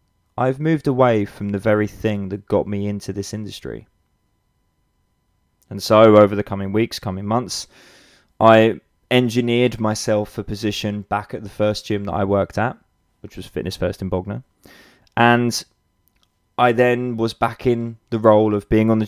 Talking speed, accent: 165 wpm, British